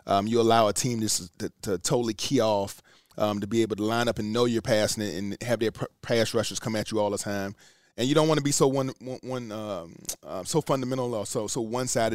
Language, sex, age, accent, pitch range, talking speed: English, male, 30-49, American, 110-125 Hz, 265 wpm